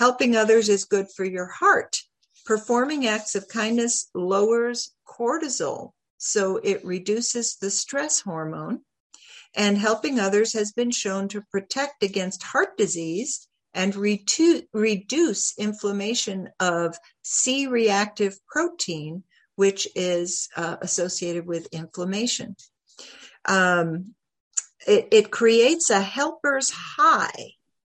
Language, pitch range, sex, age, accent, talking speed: English, 185-240 Hz, female, 60-79, American, 105 wpm